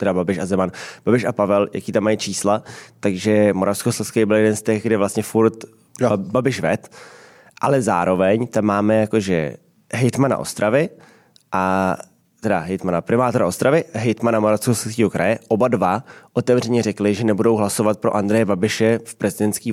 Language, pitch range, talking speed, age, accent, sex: Czech, 105-120 Hz, 155 wpm, 20-39, native, male